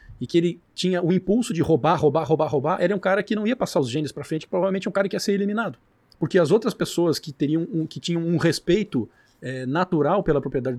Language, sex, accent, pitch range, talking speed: Portuguese, male, Brazilian, 130-175 Hz, 245 wpm